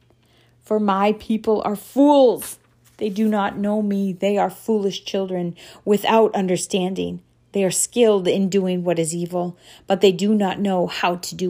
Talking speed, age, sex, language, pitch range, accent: 165 wpm, 40-59, female, English, 195-250 Hz, American